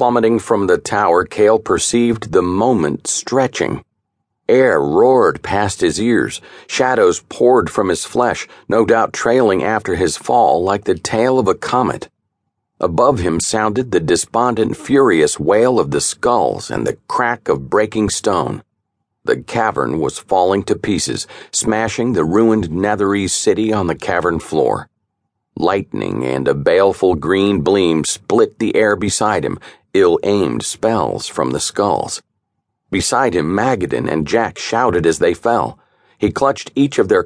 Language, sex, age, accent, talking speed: English, male, 50-69, American, 150 wpm